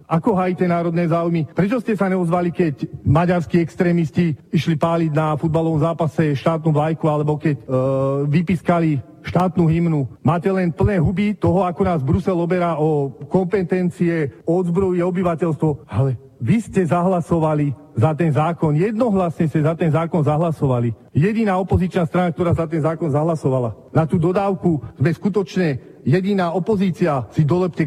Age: 40-59